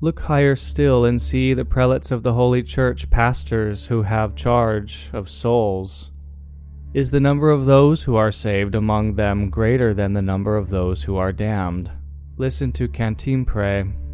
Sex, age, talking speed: male, 20-39, 165 wpm